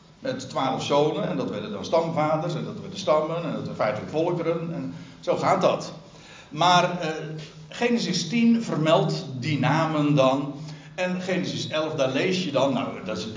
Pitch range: 130-180 Hz